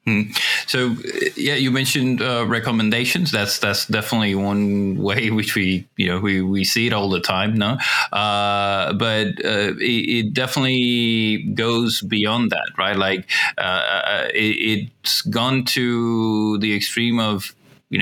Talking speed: 145 wpm